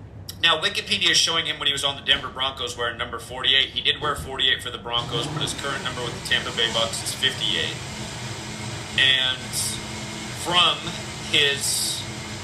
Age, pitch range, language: 30-49, 110-135 Hz, English